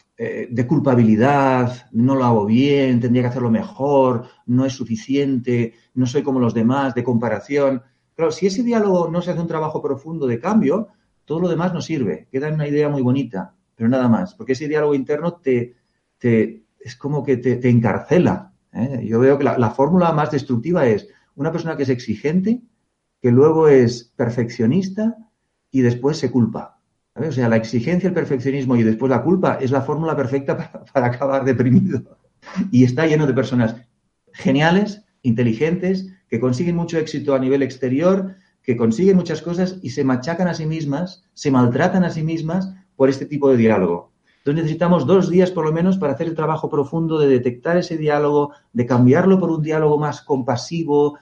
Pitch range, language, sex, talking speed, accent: 125-165 Hz, Spanish, male, 180 wpm, Spanish